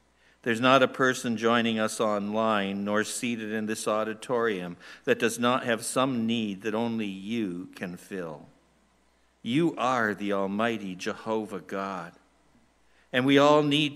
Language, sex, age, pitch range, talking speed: English, male, 60-79, 100-125 Hz, 140 wpm